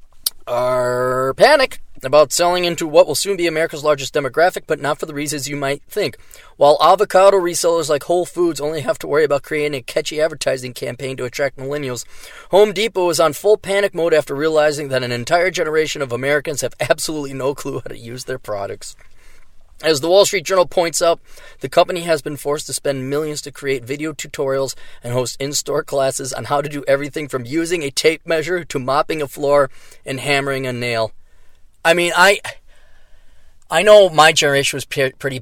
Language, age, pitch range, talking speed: English, 20-39, 130-175 Hz, 190 wpm